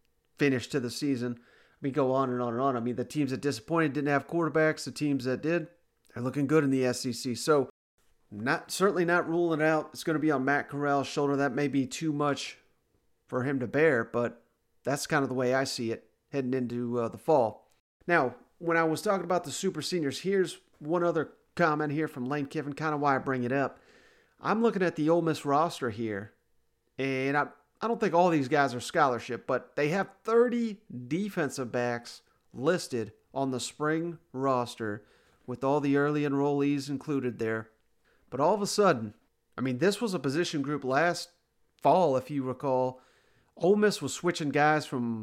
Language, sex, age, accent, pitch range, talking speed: English, male, 40-59, American, 125-165 Hz, 205 wpm